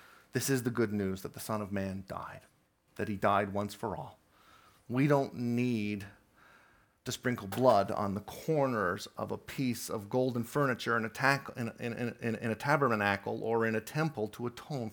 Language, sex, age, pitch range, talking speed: English, male, 40-59, 100-115 Hz, 165 wpm